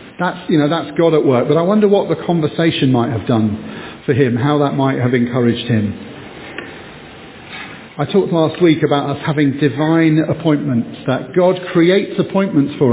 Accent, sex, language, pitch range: British, male, English, 130-165 Hz